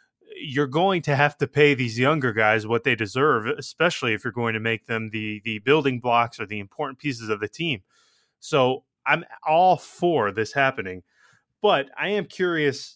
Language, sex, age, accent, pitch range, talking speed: English, male, 20-39, American, 115-150 Hz, 185 wpm